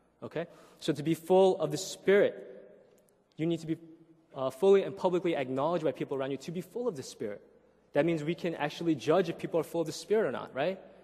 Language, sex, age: Korean, male, 20-39